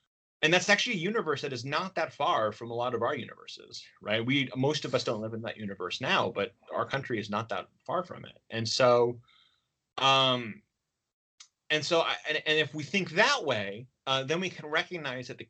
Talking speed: 215 wpm